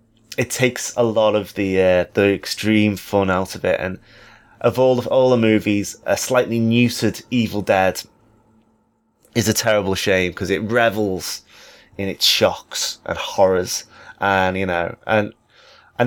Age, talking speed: 20-39, 155 wpm